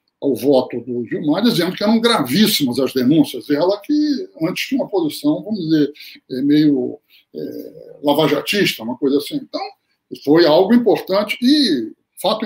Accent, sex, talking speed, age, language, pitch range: Brazilian, male, 145 wpm, 60-79, Portuguese, 185-295 Hz